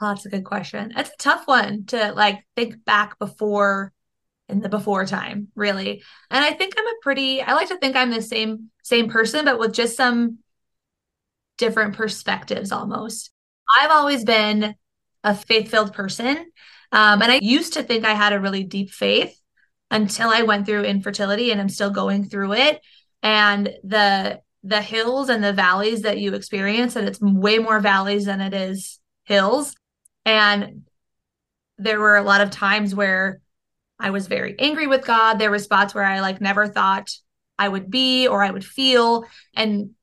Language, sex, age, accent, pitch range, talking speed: English, female, 20-39, American, 200-235 Hz, 180 wpm